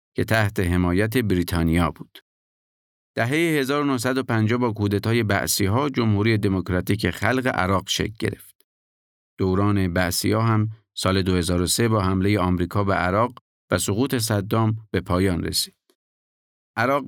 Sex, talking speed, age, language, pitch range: male, 115 wpm, 50-69, Persian, 95-115 Hz